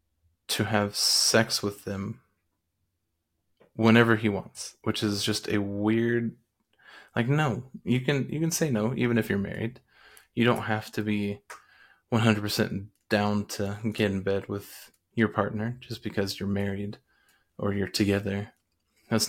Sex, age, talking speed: male, 20-39, 150 wpm